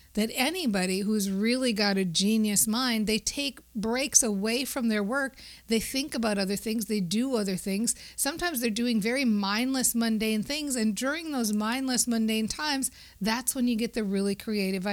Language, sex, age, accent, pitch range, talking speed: English, female, 50-69, American, 205-250 Hz, 175 wpm